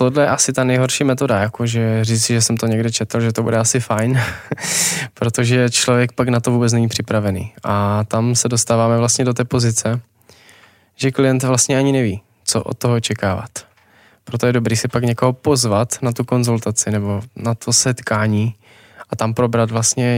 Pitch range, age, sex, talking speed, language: 110-125 Hz, 20-39, male, 180 wpm, Czech